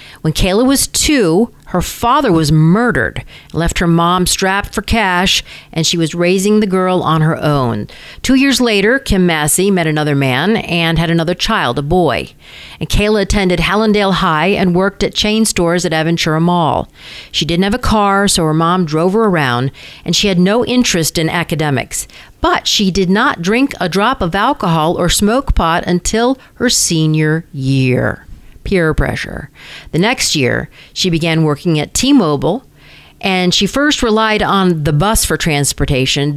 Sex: female